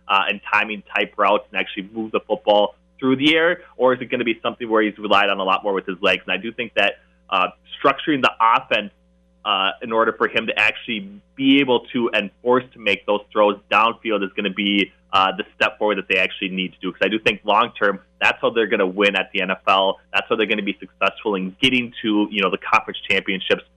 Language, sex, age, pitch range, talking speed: English, male, 20-39, 95-110 Hz, 255 wpm